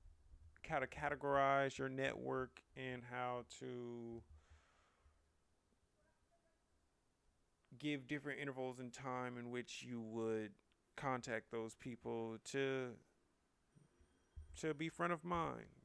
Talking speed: 100 wpm